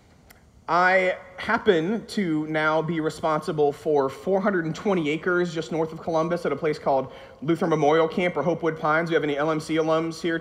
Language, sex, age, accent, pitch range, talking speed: English, male, 30-49, American, 145-185 Hz, 175 wpm